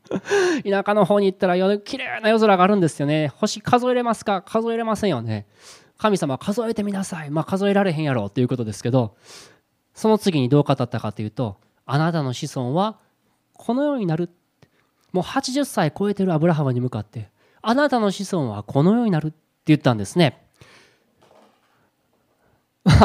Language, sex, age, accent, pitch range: Japanese, male, 20-39, native, 130-210 Hz